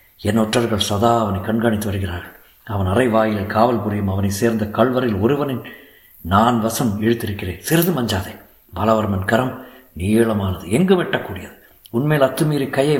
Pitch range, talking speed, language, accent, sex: 95-120 Hz, 120 wpm, Tamil, native, male